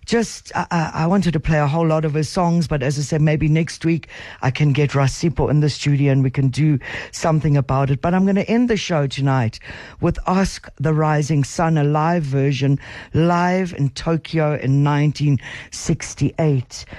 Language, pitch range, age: English, 135-170 Hz, 60-79